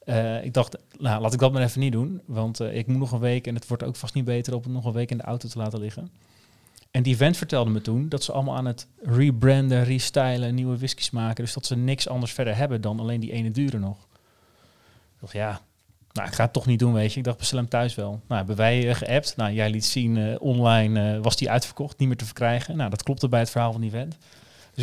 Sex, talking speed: male, 270 wpm